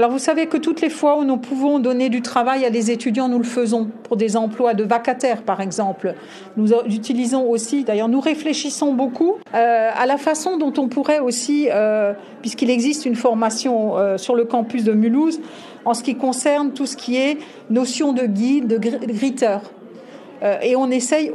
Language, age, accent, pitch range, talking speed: French, 50-69, French, 220-270 Hz, 185 wpm